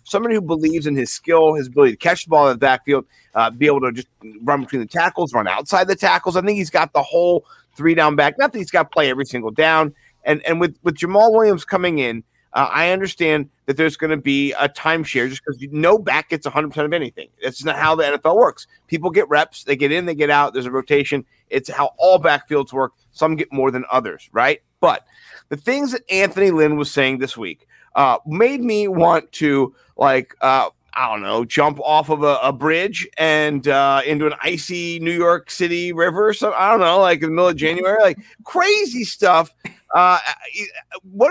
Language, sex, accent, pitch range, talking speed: English, male, American, 145-195 Hz, 220 wpm